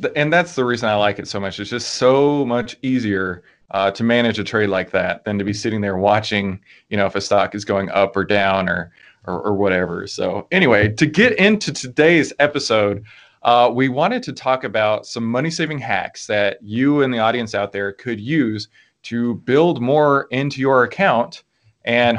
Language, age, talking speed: English, 30-49, 195 wpm